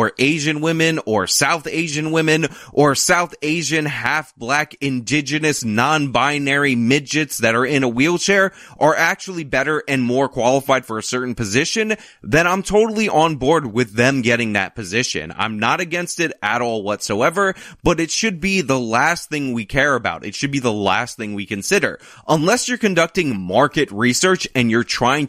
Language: English